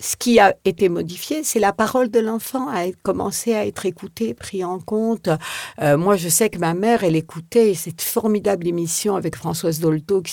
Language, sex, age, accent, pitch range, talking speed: French, female, 60-79, French, 155-200 Hz, 200 wpm